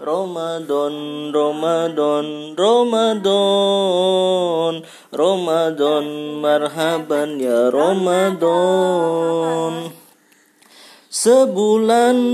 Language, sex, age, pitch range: Indonesian, male, 20-39, 170-230 Hz